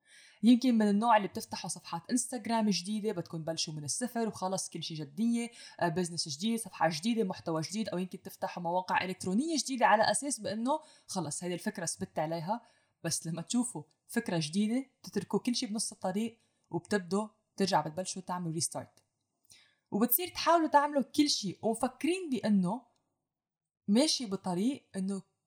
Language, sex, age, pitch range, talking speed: English, female, 20-39, 180-245 Hz, 145 wpm